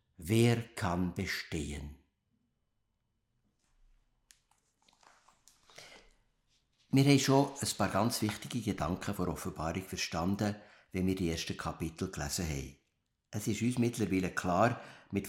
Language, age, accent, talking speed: German, 60-79, Austrian, 105 wpm